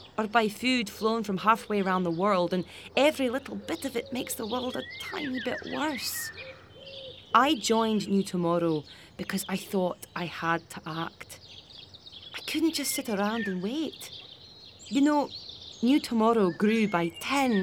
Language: English